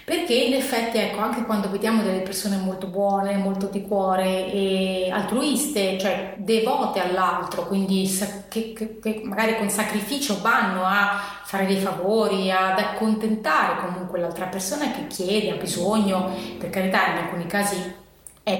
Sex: female